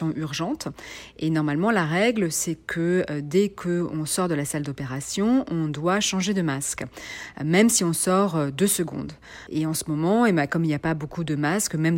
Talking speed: 215 wpm